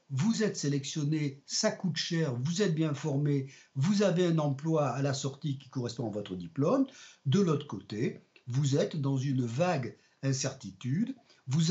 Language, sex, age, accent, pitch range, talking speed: French, male, 50-69, French, 135-180 Hz, 165 wpm